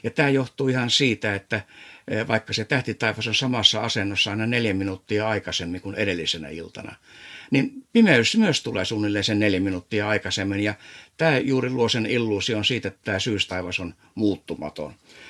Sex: male